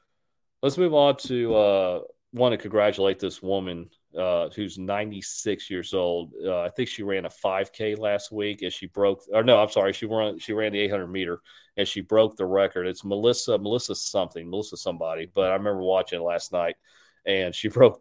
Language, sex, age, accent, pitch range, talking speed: English, male, 40-59, American, 95-110 Hz, 195 wpm